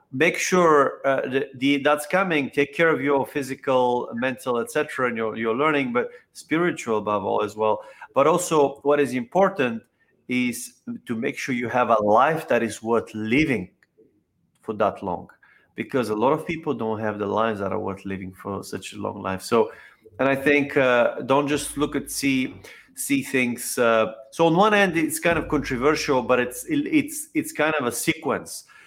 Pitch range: 120-160 Hz